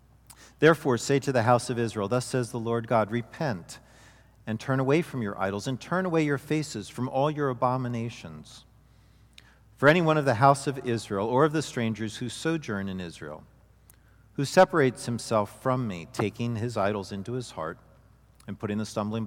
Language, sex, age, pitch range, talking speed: English, male, 40-59, 110-135 Hz, 180 wpm